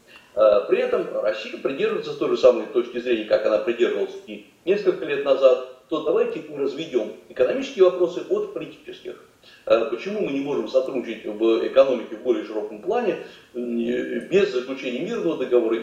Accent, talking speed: native, 145 wpm